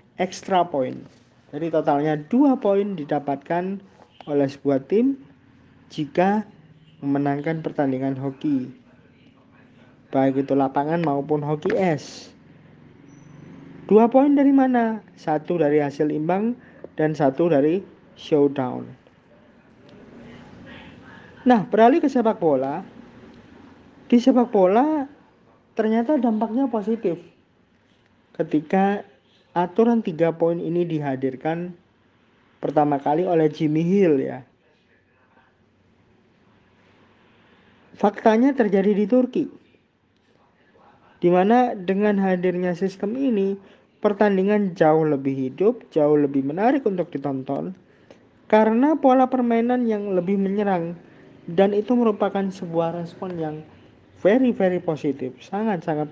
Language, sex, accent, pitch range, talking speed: Indonesian, male, native, 150-215 Hz, 95 wpm